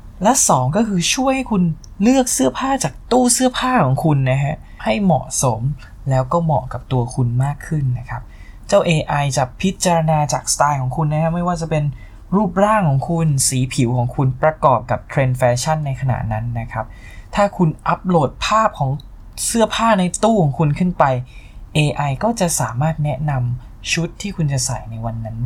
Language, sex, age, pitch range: Thai, male, 20-39, 125-170 Hz